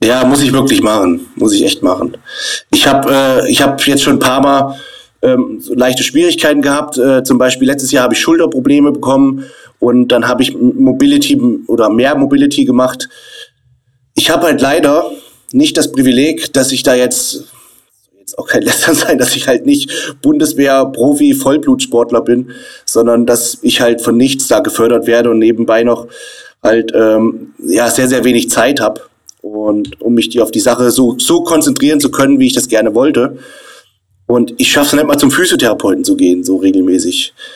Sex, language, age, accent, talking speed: male, German, 30-49, German, 180 wpm